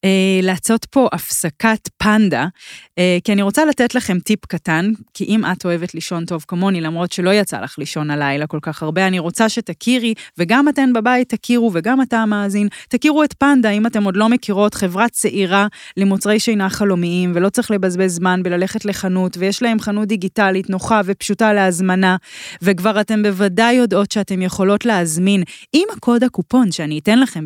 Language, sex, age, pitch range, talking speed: Hebrew, female, 20-39, 165-215 Hz, 140 wpm